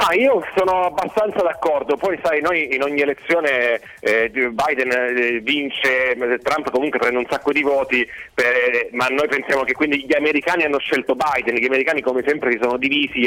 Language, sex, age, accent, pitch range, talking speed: Italian, male, 40-59, native, 125-155 Hz, 180 wpm